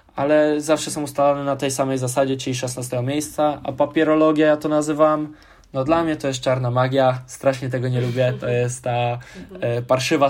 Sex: male